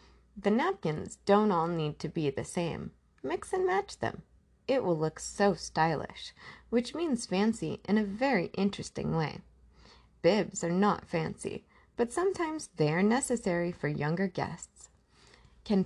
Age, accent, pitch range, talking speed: 30-49, American, 170-245 Hz, 145 wpm